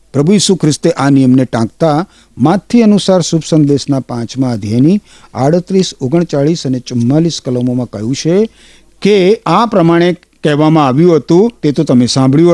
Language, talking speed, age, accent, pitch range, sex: Gujarati, 130 wpm, 50-69, native, 100-165 Hz, male